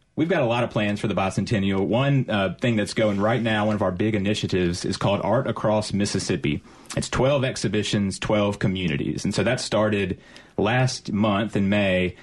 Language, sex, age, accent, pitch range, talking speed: English, male, 30-49, American, 95-115 Hz, 190 wpm